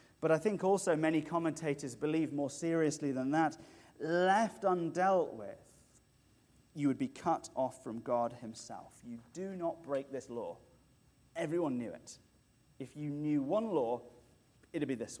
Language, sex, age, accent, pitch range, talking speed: English, male, 30-49, British, 130-170 Hz, 160 wpm